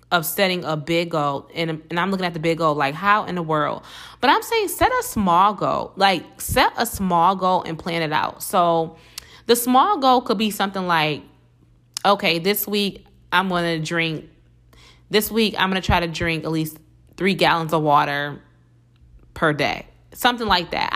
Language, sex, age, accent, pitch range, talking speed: English, female, 20-39, American, 160-215 Hz, 195 wpm